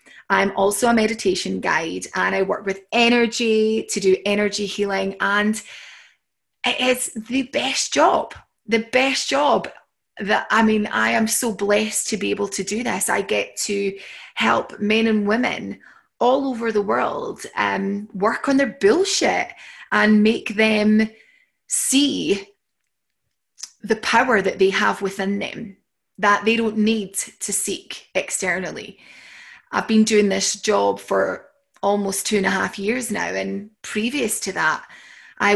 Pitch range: 200-260 Hz